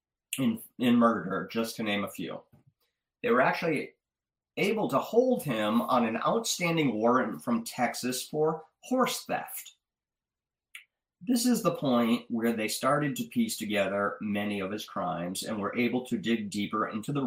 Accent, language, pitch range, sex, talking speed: American, English, 115-175 Hz, male, 160 wpm